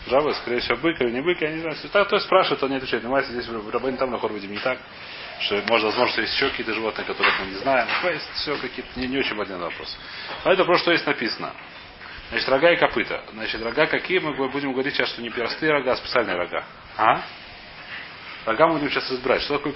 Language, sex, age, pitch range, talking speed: Russian, male, 30-49, 125-150 Hz, 225 wpm